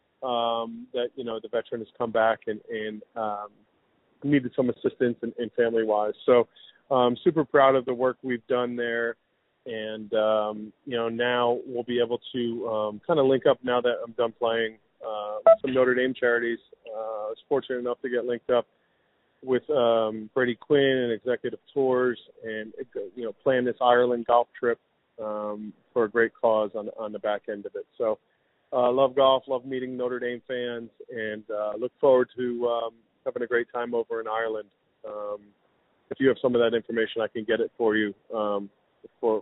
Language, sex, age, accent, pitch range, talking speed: English, male, 30-49, American, 115-130 Hz, 190 wpm